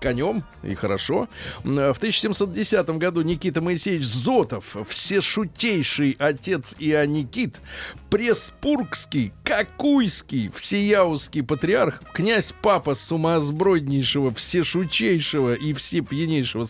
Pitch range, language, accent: 140-190 Hz, Russian, native